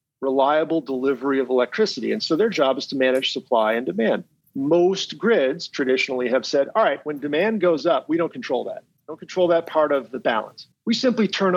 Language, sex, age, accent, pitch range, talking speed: English, male, 50-69, American, 130-175 Hz, 200 wpm